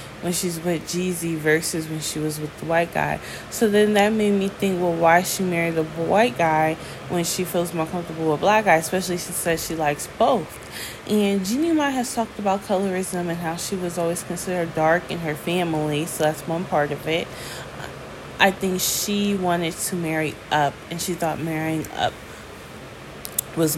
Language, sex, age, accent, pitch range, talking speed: English, female, 10-29, American, 160-195 Hz, 190 wpm